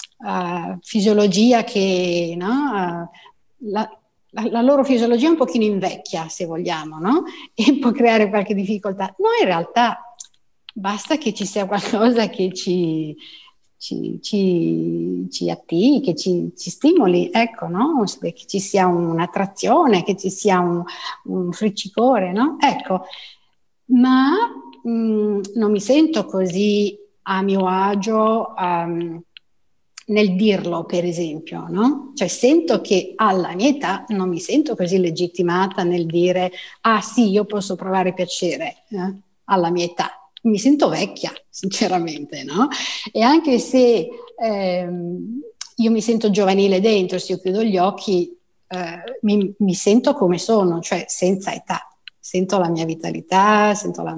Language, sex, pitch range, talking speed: Italian, female, 180-230 Hz, 145 wpm